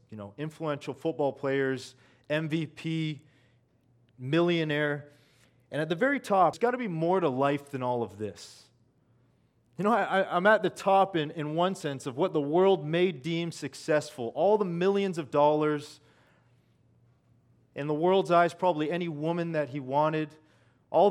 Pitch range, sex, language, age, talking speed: 125-170 Hz, male, English, 30-49, 160 wpm